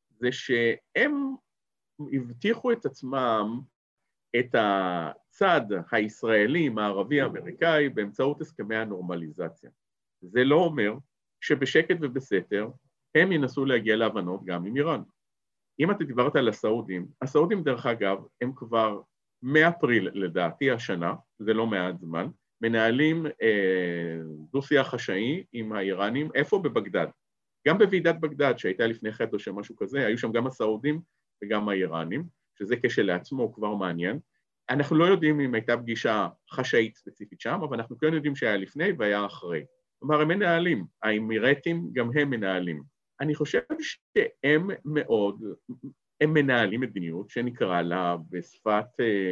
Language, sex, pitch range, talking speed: Hebrew, male, 105-150 Hz, 125 wpm